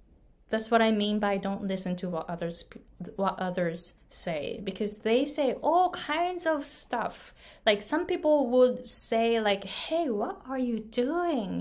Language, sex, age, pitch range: Japanese, female, 20-39, 195-265 Hz